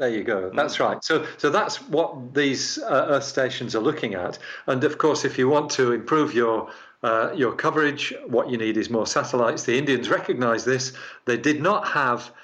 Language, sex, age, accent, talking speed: English, male, 50-69, British, 205 wpm